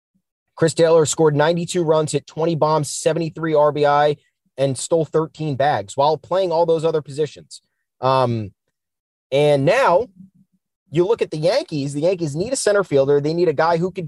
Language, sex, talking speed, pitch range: English, male, 170 wpm, 125-165 Hz